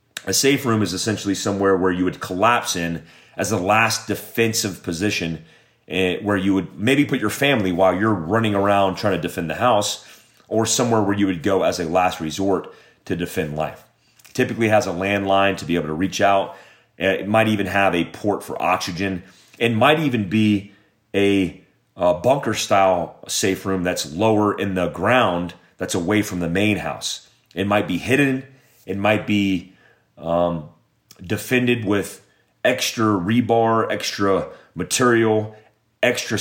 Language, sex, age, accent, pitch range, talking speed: English, male, 30-49, American, 95-110 Hz, 165 wpm